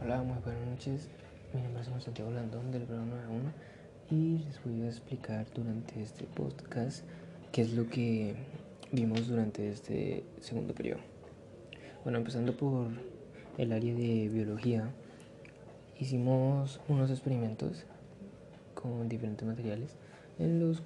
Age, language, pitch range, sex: 20-39, Spanish, 115-135 Hz, male